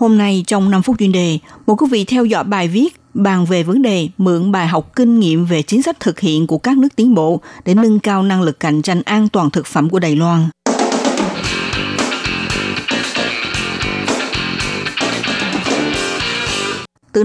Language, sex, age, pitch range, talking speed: Vietnamese, female, 60-79, 170-230 Hz, 165 wpm